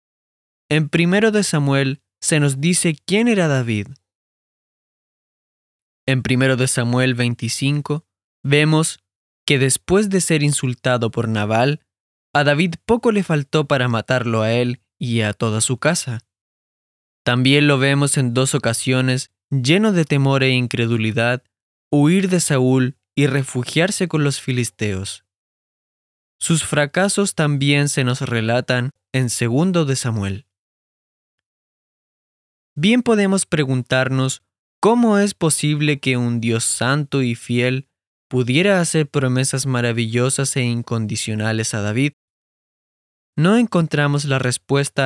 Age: 20-39